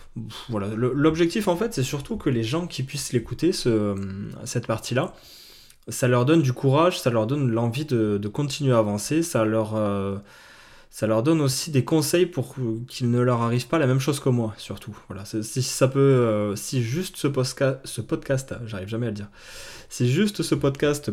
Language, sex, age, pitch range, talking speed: French, male, 20-39, 110-140 Hz, 205 wpm